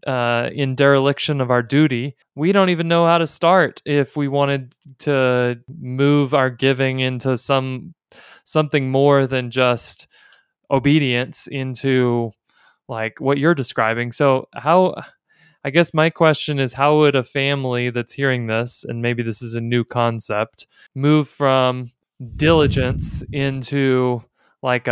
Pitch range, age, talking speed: 125-145 Hz, 20-39, 140 wpm